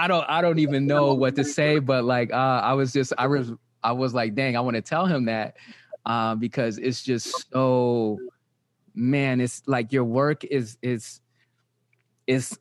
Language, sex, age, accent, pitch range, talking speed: English, male, 20-39, American, 125-155 Hz, 190 wpm